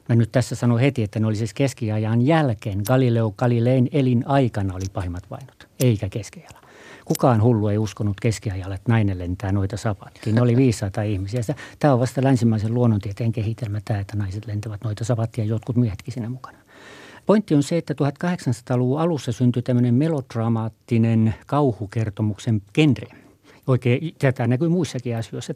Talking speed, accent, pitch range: 150 wpm, native, 110-140 Hz